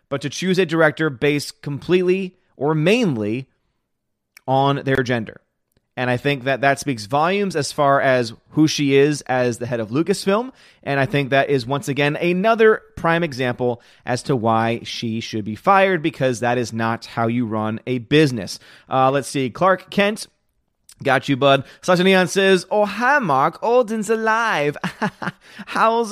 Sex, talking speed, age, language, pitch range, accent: male, 170 wpm, 30-49, English, 135-190 Hz, American